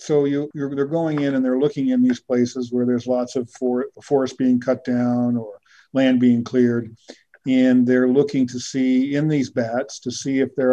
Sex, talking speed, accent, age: male, 190 wpm, American, 50-69